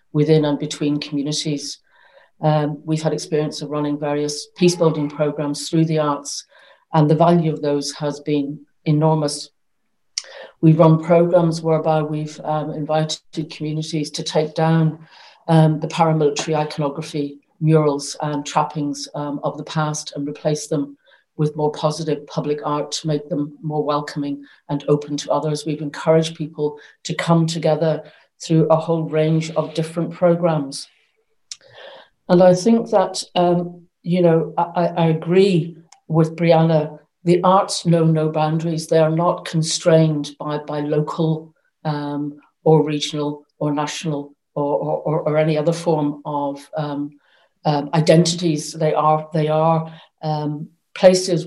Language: English